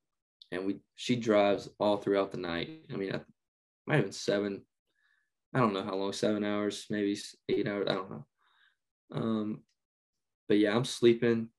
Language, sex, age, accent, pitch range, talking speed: English, male, 10-29, American, 100-115 Hz, 170 wpm